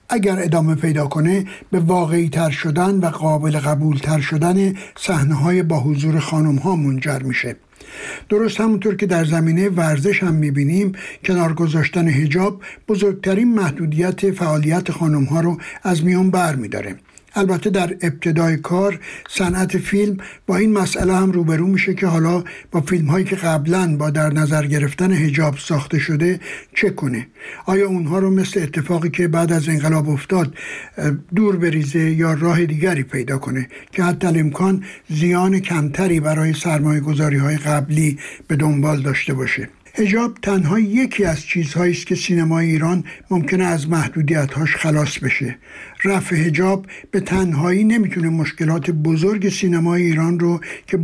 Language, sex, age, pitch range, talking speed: Persian, male, 60-79, 155-185 Hz, 145 wpm